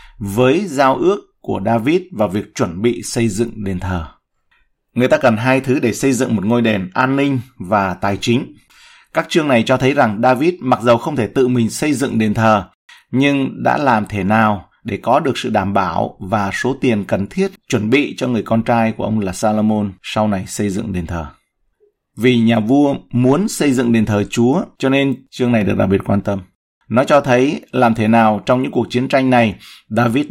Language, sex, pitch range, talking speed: Vietnamese, male, 105-130 Hz, 215 wpm